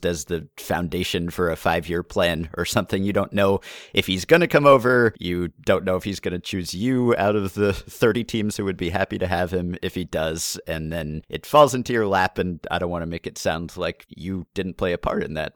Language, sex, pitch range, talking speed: English, male, 85-105 Hz, 255 wpm